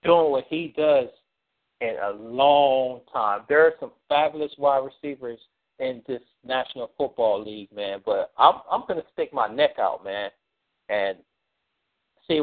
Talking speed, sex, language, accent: 155 wpm, male, English, American